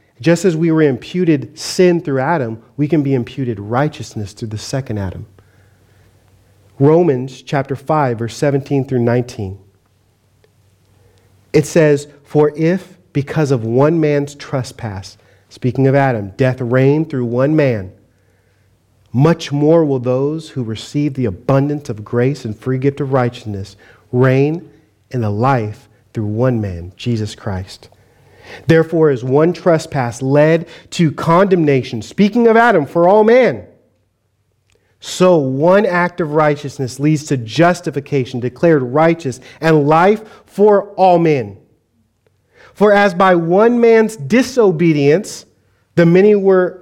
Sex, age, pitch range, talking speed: male, 40-59, 110-155 Hz, 130 wpm